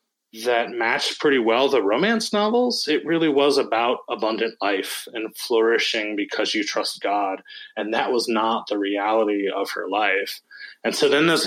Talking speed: 165 wpm